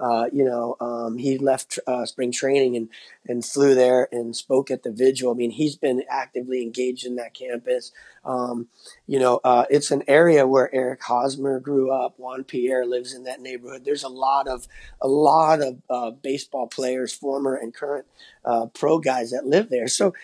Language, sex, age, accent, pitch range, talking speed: English, male, 30-49, American, 125-155 Hz, 195 wpm